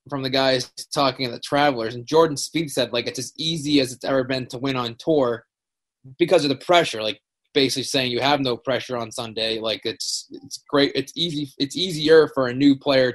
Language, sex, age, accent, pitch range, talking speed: English, male, 20-39, American, 120-140 Hz, 220 wpm